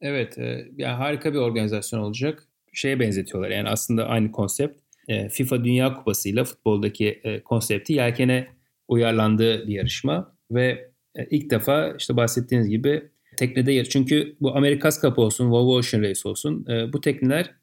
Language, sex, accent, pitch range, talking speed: Turkish, male, native, 110-140 Hz, 150 wpm